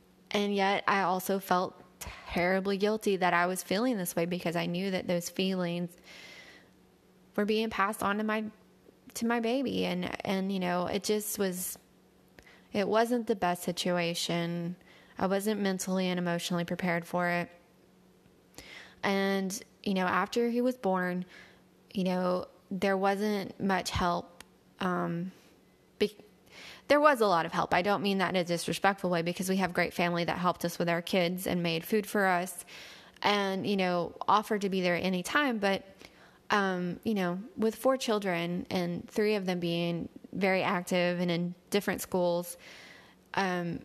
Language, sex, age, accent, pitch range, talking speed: English, female, 20-39, American, 175-205 Hz, 165 wpm